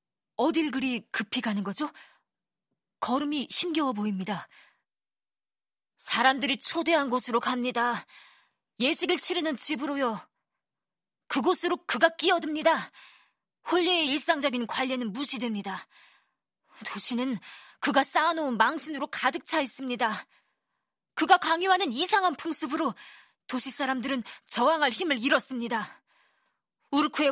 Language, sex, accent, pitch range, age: Korean, female, native, 240-315 Hz, 20-39